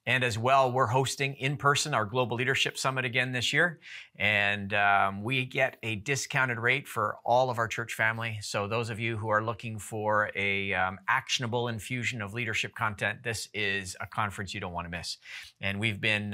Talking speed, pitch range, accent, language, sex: 195 wpm, 100-130 Hz, American, English, male